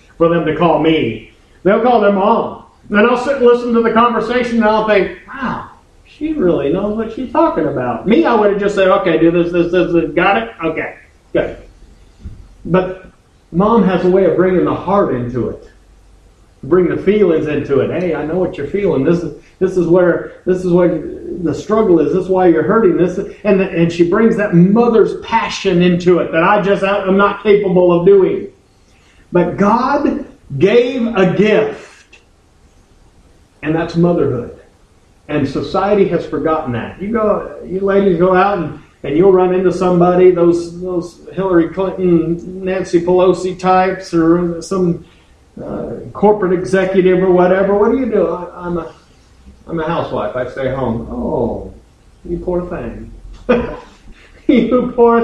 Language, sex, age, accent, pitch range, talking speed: English, male, 50-69, American, 160-200 Hz, 175 wpm